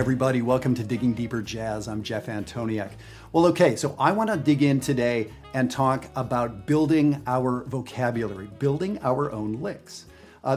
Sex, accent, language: male, American, English